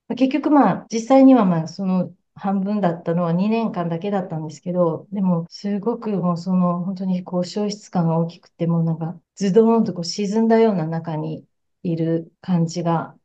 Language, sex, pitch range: Japanese, female, 175-225 Hz